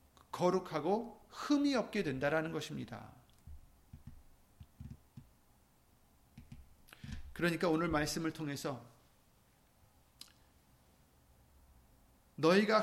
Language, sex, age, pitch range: Korean, male, 40-59, 130-210 Hz